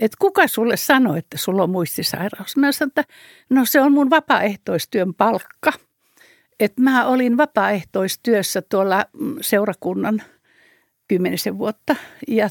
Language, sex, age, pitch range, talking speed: Finnish, female, 60-79, 205-275 Hz, 125 wpm